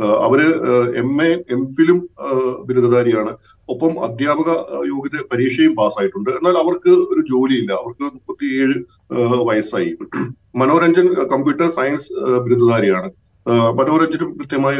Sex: male